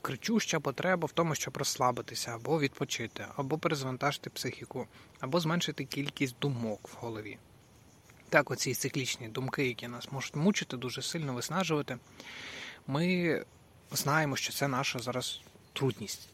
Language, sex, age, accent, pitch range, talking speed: Ukrainian, male, 20-39, native, 120-160 Hz, 130 wpm